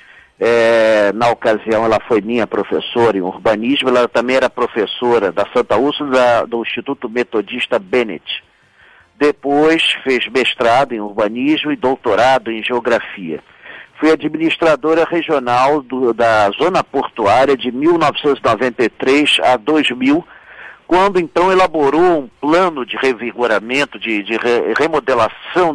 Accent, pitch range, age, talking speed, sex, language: Brazilian, 125-155 Hz, 50-69, 120 wpm, male, Portuguese